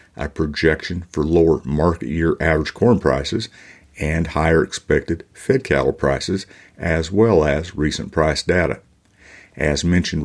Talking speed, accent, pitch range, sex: 130 wpm, American, 75-90 Hz, male